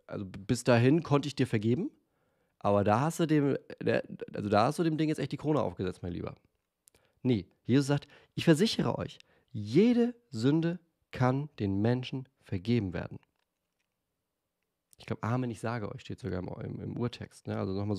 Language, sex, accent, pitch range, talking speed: German, male, German, 95-125 Hz, 170 wpm